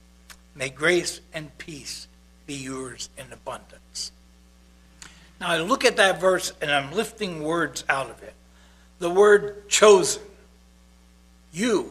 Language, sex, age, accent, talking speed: English, male, 60-79, American, 125 wpm